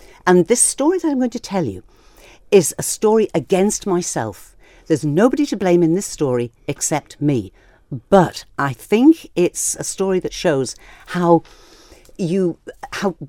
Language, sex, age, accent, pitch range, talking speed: English, female, 50-69, British, 130-210 Hz, 155 wpm